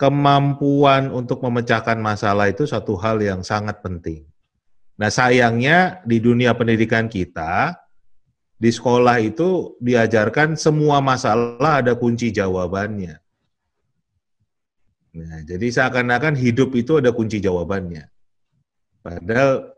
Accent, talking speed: native, 105 wpm